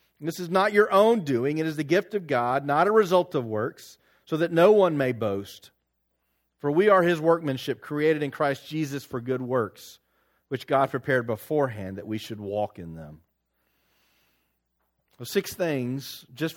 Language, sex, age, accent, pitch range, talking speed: English, male, 40-59, American, 120-190 Hz, 180 wpm